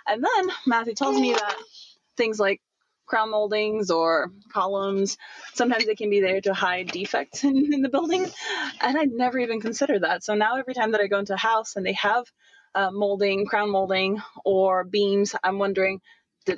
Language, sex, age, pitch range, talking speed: English, female, 20-39, 195-265 Hz, 190 wpm